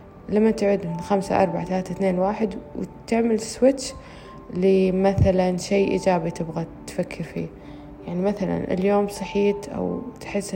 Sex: female